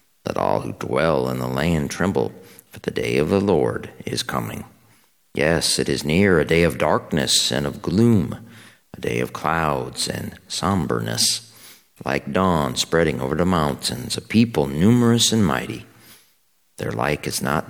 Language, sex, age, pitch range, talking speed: English, male, 50-69, 65-90 Hz, 165 wpm